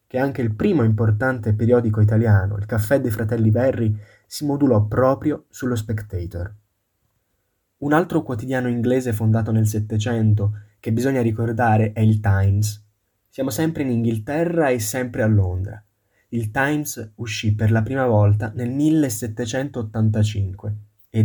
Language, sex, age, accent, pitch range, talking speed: Italian, male, 20-39, native, 105-120 Hz, 135 wpm